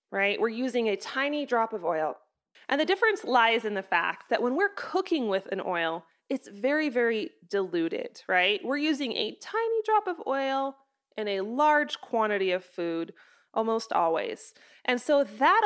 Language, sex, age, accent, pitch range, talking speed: English, female, 20-39, American, 200-290 Hz, 175 wpm